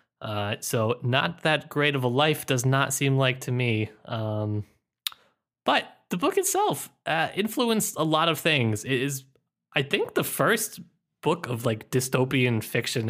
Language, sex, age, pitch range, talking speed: English, male, 20-39, 115-145 Hz, 165 wpm